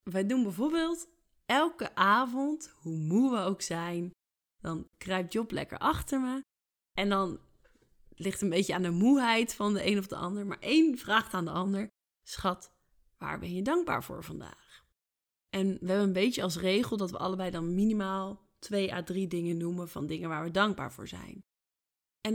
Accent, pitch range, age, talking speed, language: Dutch, 180-220 Hz, 20-39, 185 wpm, Dutch